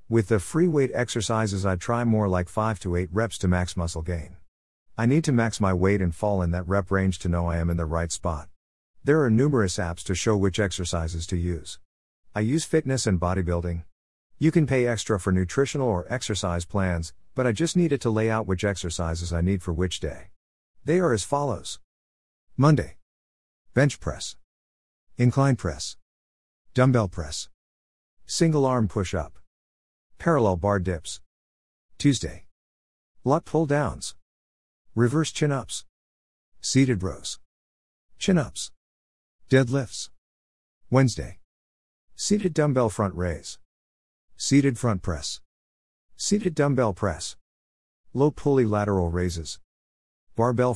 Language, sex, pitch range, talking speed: English, male, 70-120 Hz, 145 wpm